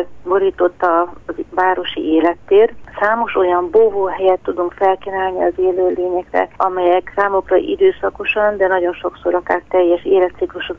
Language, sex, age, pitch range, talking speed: Hungarian, female, 30-49, 175-195 Hz, 115 wpm